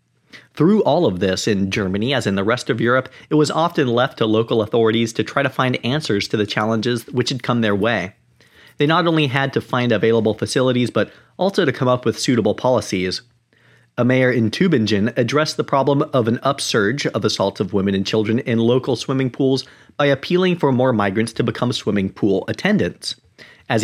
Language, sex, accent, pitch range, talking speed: English, male, American, 110-140 Hz, 200 wpm